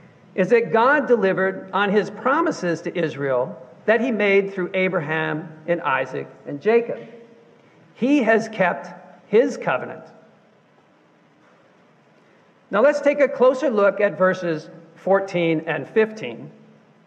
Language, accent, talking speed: English, American, 120 wpm